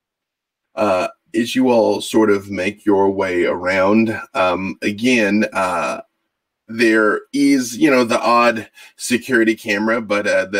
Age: 20-39